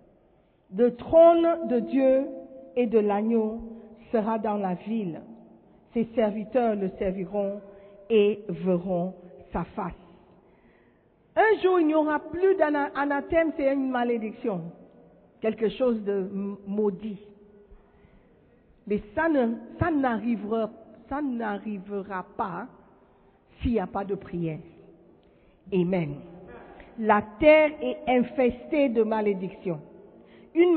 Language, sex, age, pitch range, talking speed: French, female, 50-69, 190-260 Hz, 105 wpm